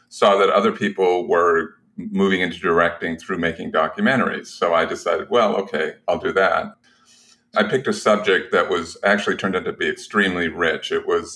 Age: 50-69